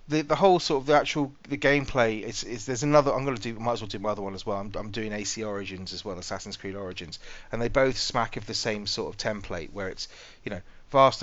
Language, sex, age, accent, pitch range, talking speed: English, male, 30-49, British, 100-120 Hz, 275 wpm